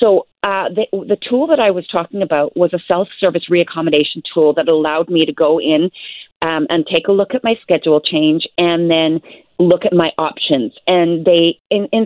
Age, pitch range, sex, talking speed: 40-59, 165-195 Hz, female, 200 wpm